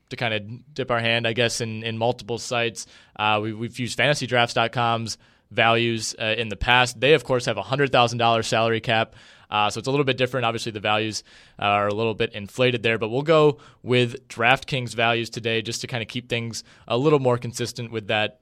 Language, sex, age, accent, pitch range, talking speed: English, male, 20-39, American, 110-125 Hz, 220 wpm